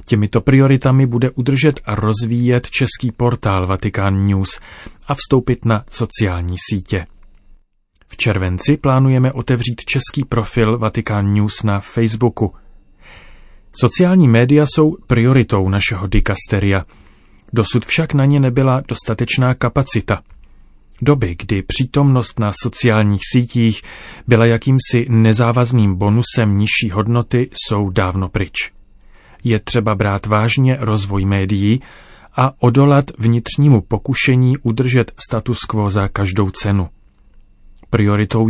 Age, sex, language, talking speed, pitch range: 30-49, male, Czech, 110 wpm, 100-125 Hz